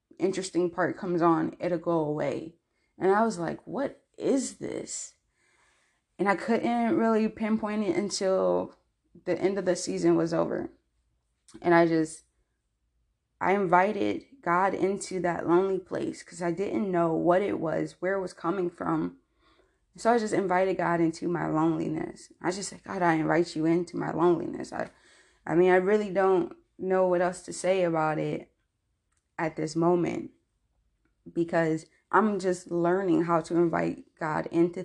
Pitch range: 165-185 Hz